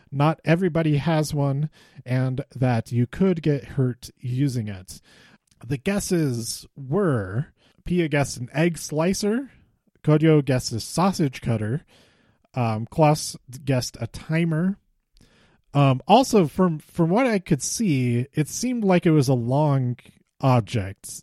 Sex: male